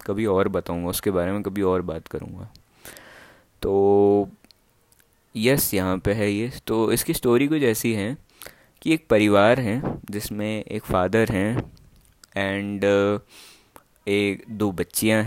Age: 20-39